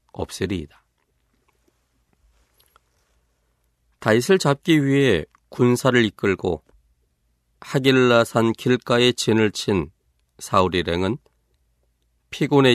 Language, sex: Korean, male